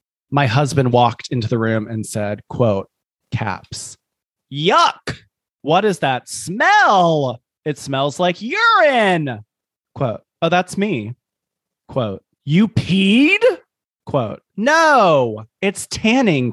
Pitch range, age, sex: 125-180 Hz, 30-49, male